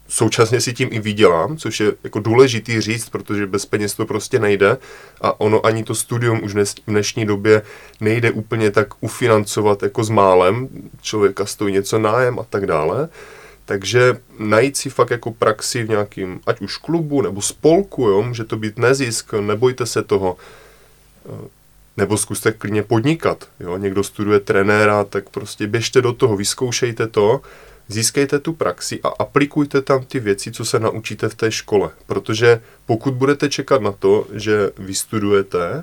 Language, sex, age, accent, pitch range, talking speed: Czech, male, 20-39, native, 105-130 Hz, 160 wpm